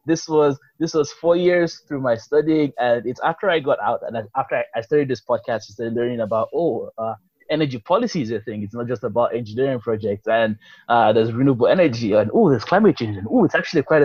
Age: 20-39